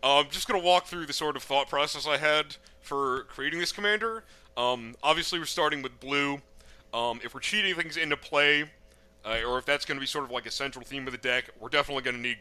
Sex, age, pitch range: male, 30-49, 120-150 Hz